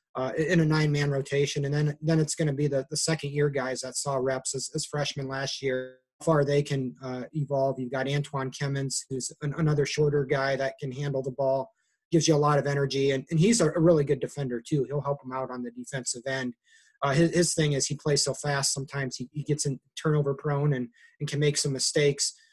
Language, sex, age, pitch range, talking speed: English, male, 30-49, 135-150 Hz, 235 wpm